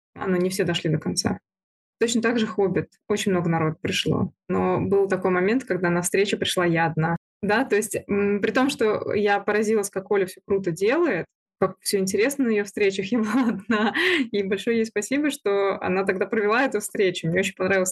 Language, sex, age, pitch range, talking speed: Russian, female, 20-39, 195-230 Hz, 200 wpm